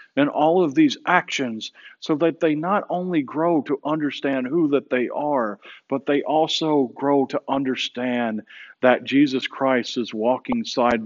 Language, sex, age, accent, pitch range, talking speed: English, male, 50-69, American, 125-165 Hz, 155 wpm